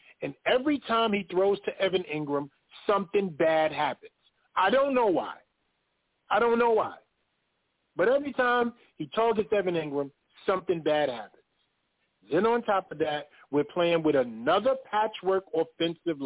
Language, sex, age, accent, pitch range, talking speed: English, male, 40-59, American, 140-200 Hz, 150 wpm